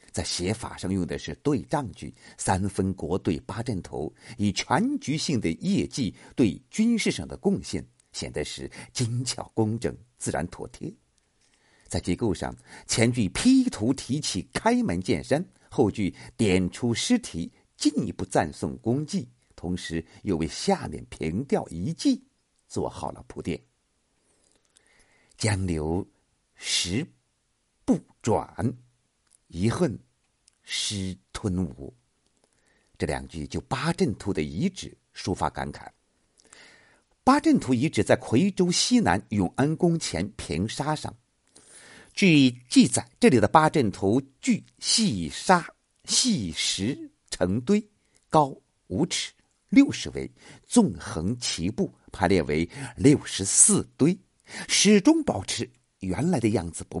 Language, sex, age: Chinese, male, 50-69